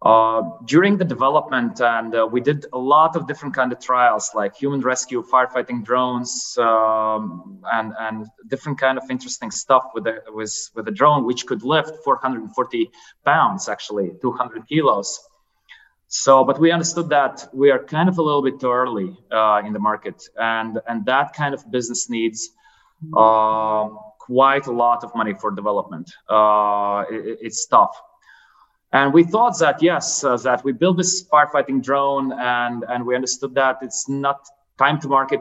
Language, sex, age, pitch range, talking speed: English, male, 20-39, 115-140 Hz, 175 wpm